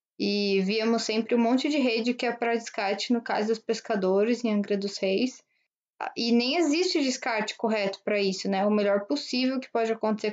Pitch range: 210-250 Hz